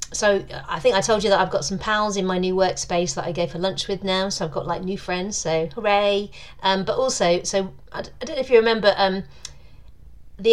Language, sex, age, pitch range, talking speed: English, female, 40-59, 165-200 Hz, 245 wpm